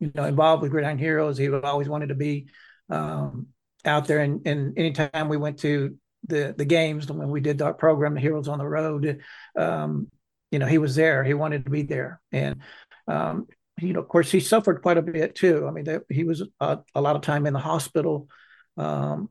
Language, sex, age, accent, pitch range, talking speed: English, male, 60-79, American, 140-160 Hz, 220 wpm